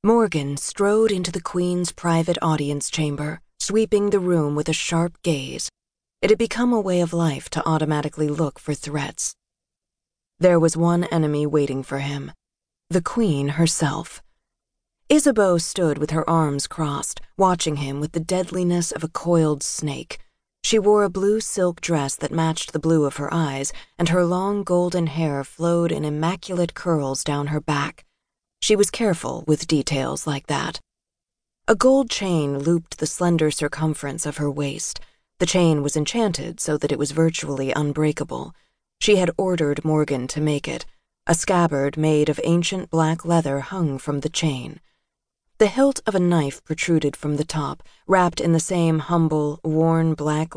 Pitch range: 150-175 Hz